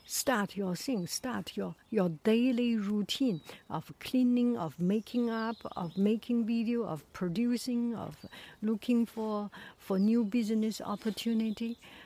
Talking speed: 125 wpm